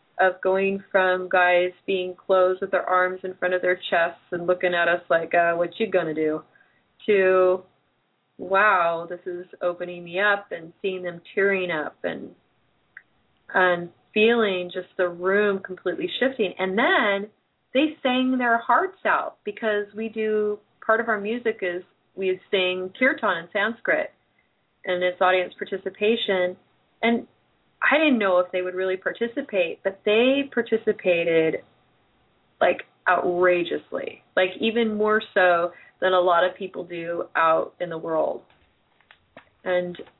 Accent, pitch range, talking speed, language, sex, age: American, 180-210 Hz, 145 wpm, English, female, 30-49